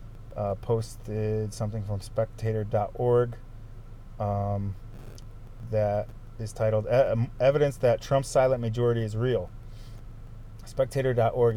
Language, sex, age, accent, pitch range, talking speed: English, male, 20-39, American, 110-135 Hz, 95 wpm